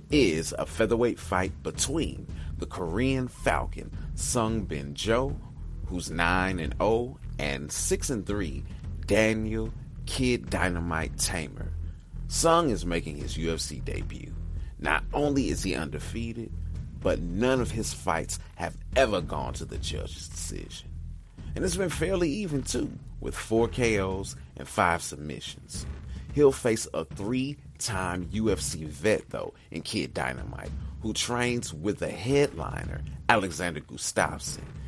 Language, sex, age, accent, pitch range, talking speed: English, male, 30-49, American, 80-110 Hz, 130 wpm